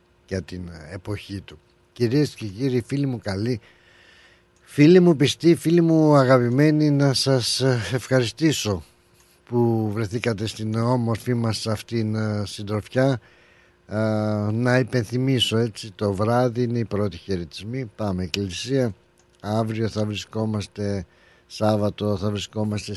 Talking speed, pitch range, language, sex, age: 110 wpm, 90-115 Hz, Greek, male, 60-79